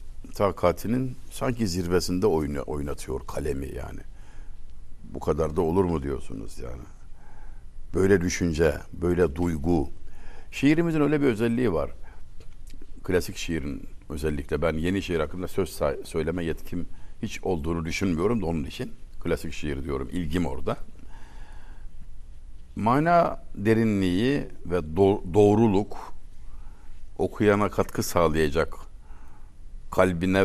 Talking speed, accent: 100 wpm, native